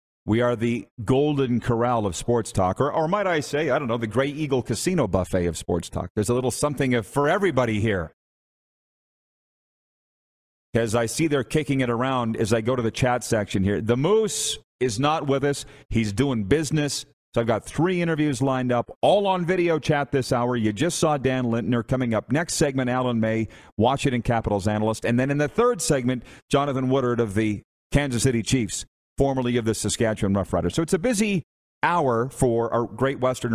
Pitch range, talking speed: 105-135 Hz, 200 wpm